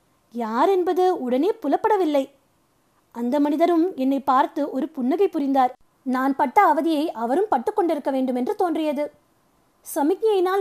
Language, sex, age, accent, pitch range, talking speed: Tamil, female, 20-39, native, 265-365 Hz, 115 wpm